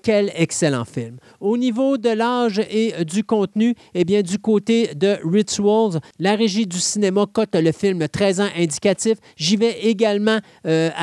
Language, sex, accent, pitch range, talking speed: French, male, Canadian, 170-220 Hz, 185 wpm